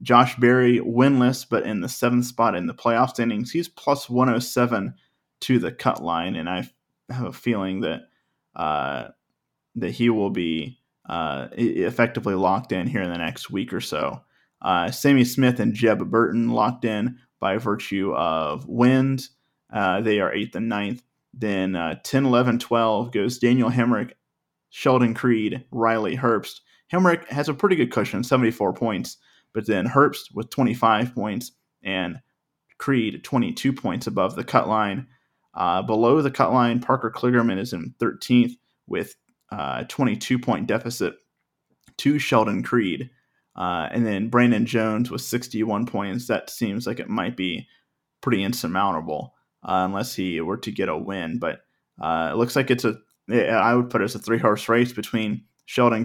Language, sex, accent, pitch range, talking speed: English, male, American, 110-125 Hz, 160 wpm